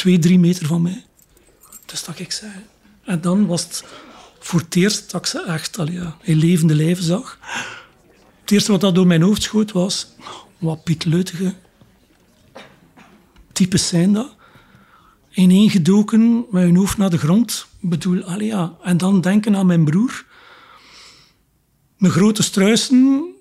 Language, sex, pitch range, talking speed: Dutch, male, 175-220 Hz, 150 wpm